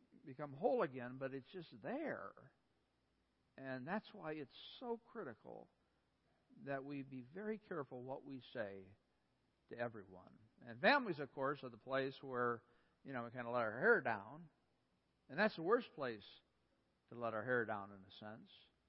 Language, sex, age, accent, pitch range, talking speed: English, male, 60-79, American, 115-140 Hz, 170 wpm